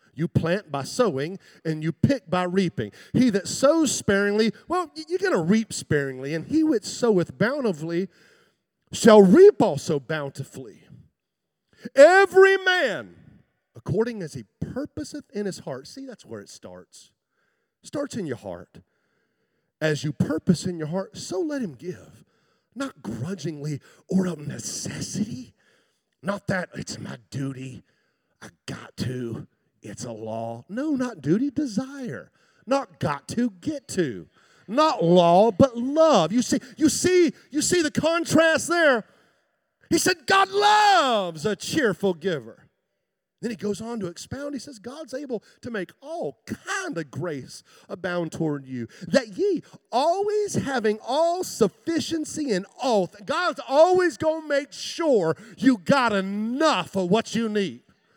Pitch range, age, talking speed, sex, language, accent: 170-285 Hz, 40-59, 145 wpm, male, English, American